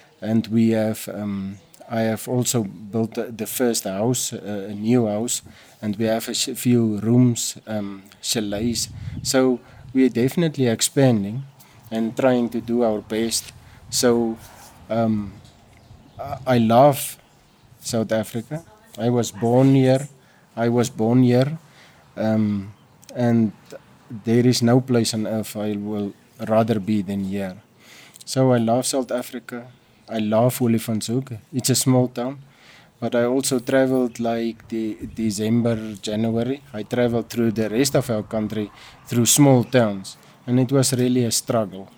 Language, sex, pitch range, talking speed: English, male, 110-125 Hz, 140 wpm